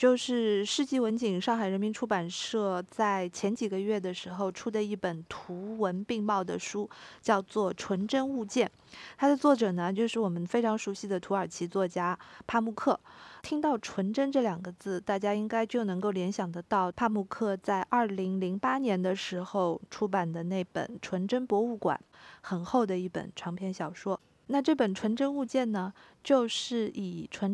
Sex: female